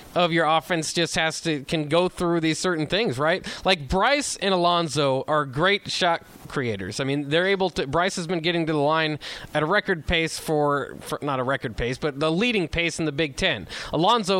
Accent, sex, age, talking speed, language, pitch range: American, male, 20-39, 215 wpm, English, 160-200 Hz